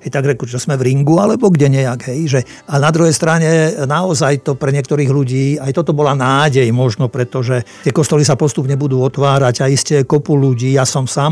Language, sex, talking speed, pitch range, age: Slovak, male, 200 wpm, 130-150 Hz, 50-69